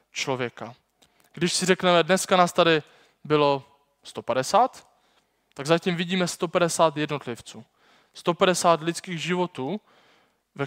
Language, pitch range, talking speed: Czech, 130-165 Hz, 100 wpm